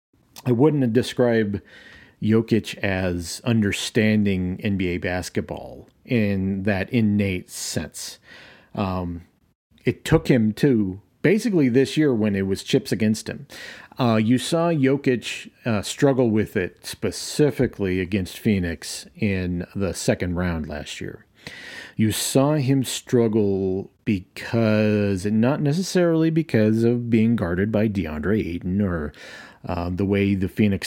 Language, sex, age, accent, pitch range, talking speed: English, male, 40-59, American, 95-125 Hz, 120 wpm